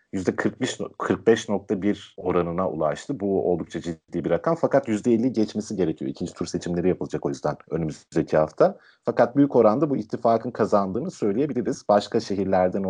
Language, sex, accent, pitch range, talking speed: Turkish, male, native, 95-125 Hz, 140 wpm